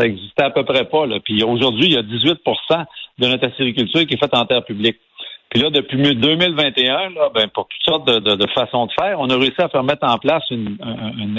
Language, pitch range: French, 115-140 Hz